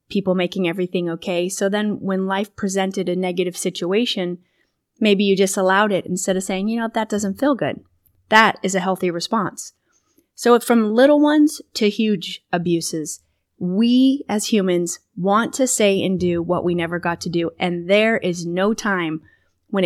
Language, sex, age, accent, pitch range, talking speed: English, female, 30-49, American, 175-215 Hz, 175 wpm